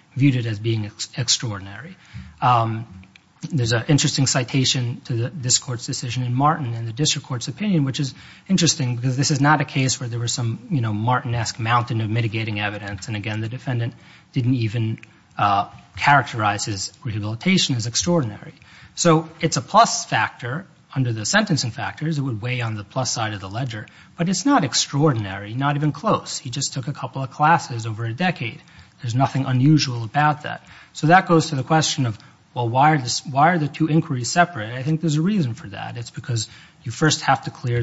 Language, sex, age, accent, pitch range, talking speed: English, male, 30-49, American, 115-155 Hz, 200 wpm